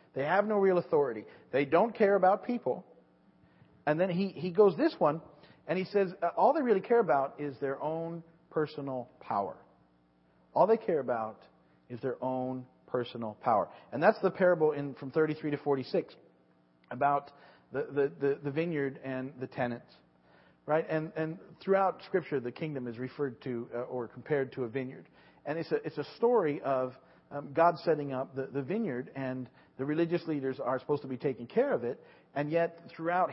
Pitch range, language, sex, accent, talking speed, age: 130-170 Hz, English, male, American, 185 wpm, 40-59